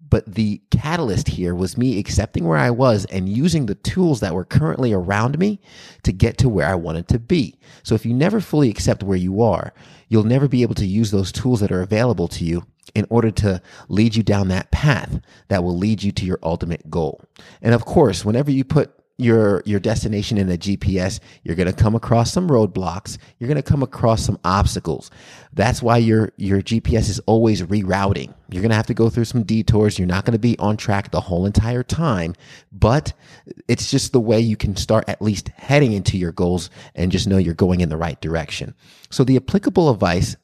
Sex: male